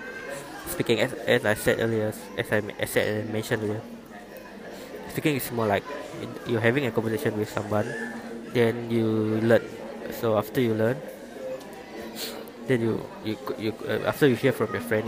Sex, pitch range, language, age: male, 110-125 Hz, English, 20-39